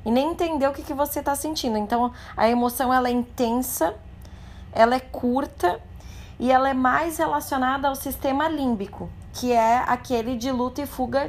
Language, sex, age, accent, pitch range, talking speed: Portuguese, female, 20-39, Brazilian, 230-280 Hz, 170 wpm